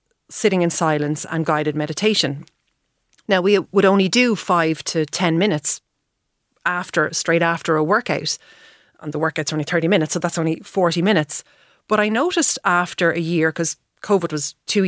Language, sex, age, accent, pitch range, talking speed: English, female, 30-49, Irish, 165-210 Hz, 165 wpm